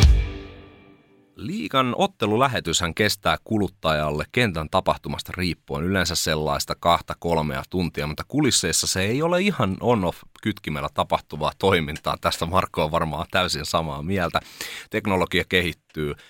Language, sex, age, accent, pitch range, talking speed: Finnish, male, 30-49, native, 75-100 Hz, 105 wpm